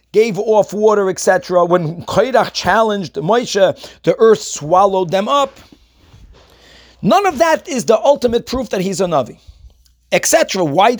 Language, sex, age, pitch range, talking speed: English, male, 40-59, 185-245 Hz, 140 wpm